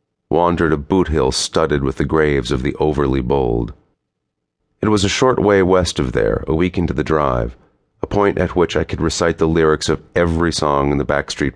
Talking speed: 200 wpm